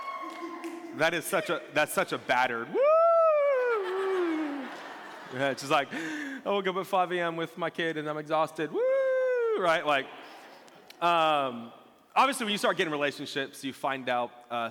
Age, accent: 20-39, American